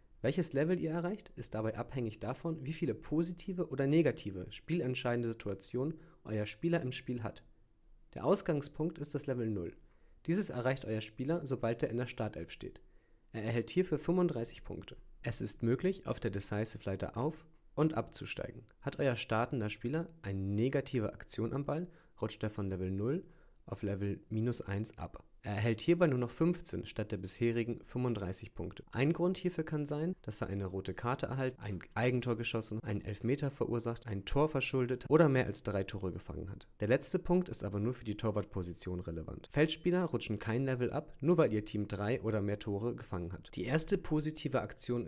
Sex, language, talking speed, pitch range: male, German, 180 wpm, 105-145 Hz